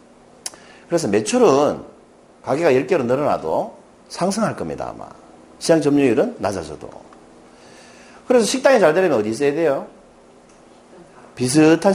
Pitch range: 130-215 Hz